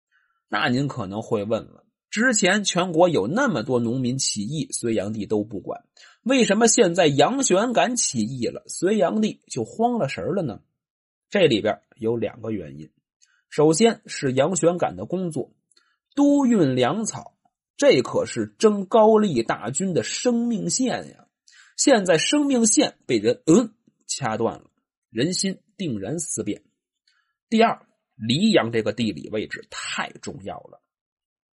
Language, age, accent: Chinese, 30-49, native